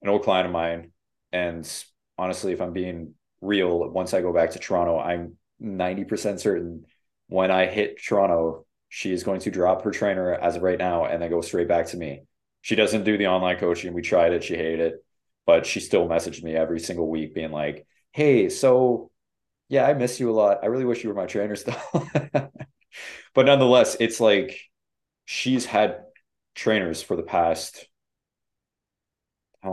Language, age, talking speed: English, 20-39, 185 wpm